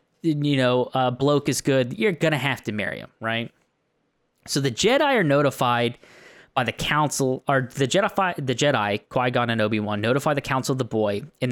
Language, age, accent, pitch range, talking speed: English, 20-39, American, 115-155 Hz, 200 wpm